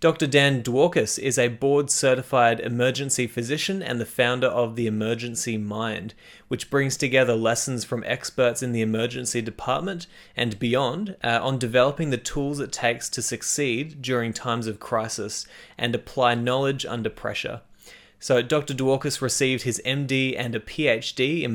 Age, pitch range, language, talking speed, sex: 20-39, 115-135 Hz, English, 155 wpm, male